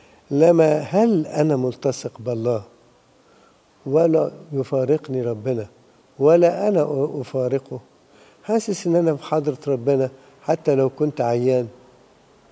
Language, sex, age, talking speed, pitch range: English, male, 60-79, 100 wpm, 130-165 Hz